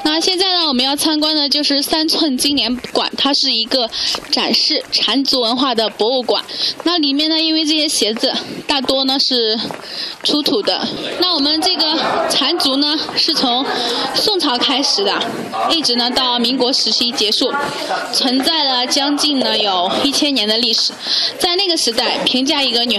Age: 10-29